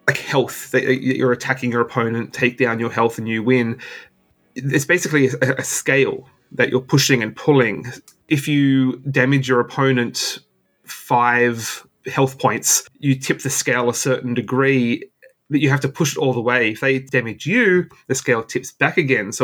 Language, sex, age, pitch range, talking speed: English, male, 20-39, 120-140 Hz, 175 wpm